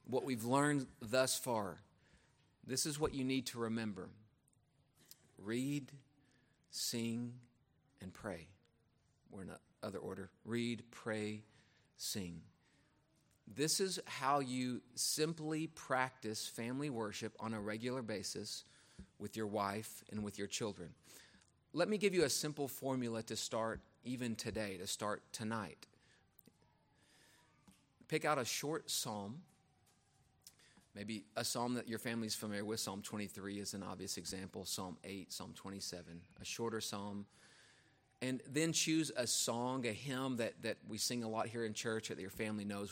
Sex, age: male, 40-59